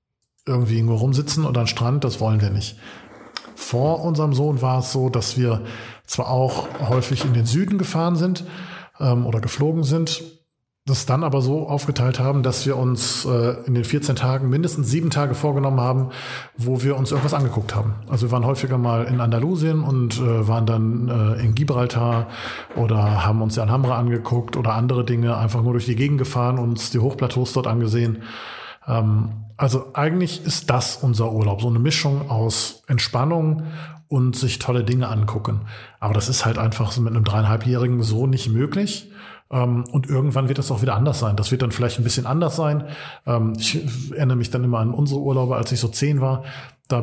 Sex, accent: male, German